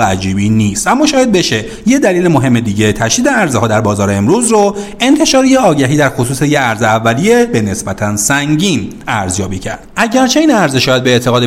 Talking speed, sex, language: 185 wpm, male, Persian